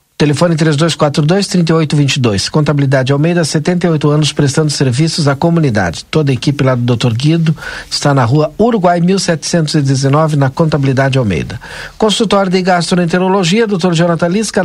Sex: male